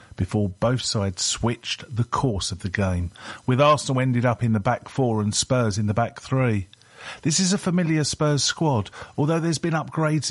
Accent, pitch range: British, 100-130 Hz